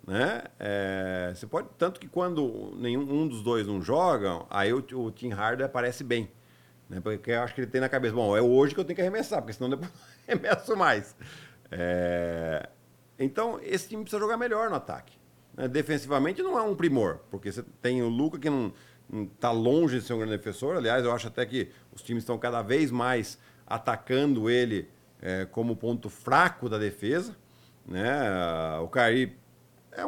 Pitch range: 110-145 Hz